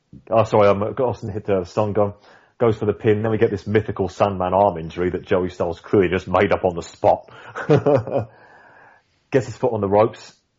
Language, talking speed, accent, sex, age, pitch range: English, 215 wpm, British, male, 30-49, 100-125 Hz